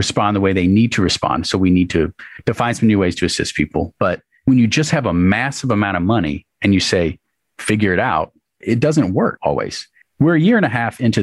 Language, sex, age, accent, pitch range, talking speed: English, male, 40-59, American, 90-120 Hz, 240 wpm